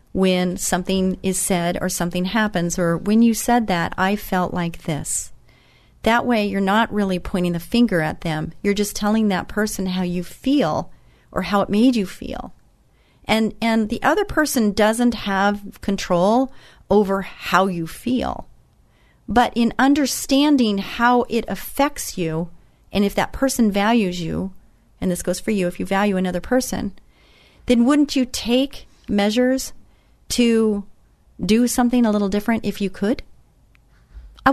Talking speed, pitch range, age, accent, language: 155 wpm, 180-240 Hz, 40-59, American, English